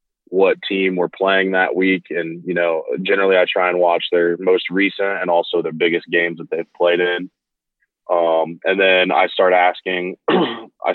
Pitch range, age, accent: 85-95 Hz, 20-39, American